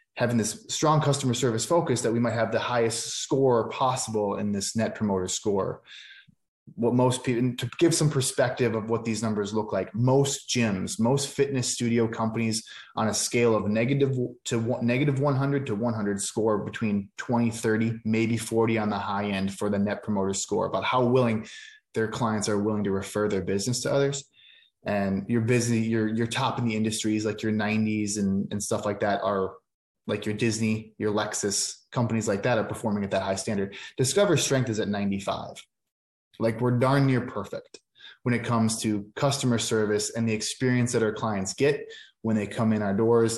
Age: 20-39